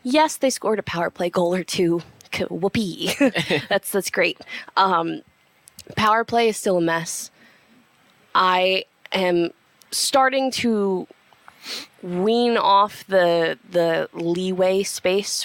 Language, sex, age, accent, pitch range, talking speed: English, female, 20-39, American, 170-220 Hz, 115 wpm